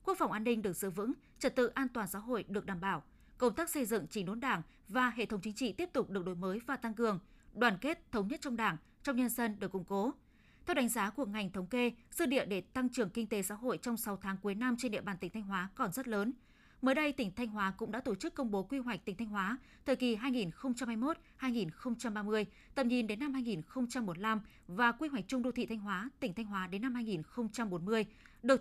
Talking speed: 245 wpm